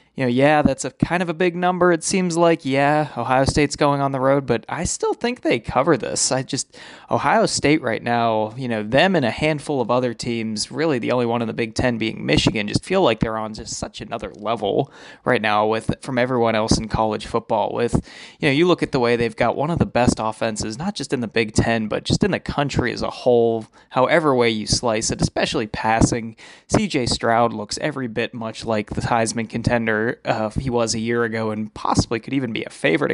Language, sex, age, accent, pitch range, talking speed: English, male, 20-39, American, 115-145 Hz, 235 wpm